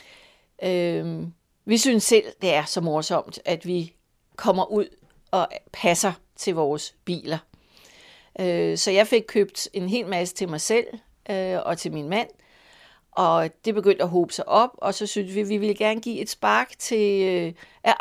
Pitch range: 180-230 Hz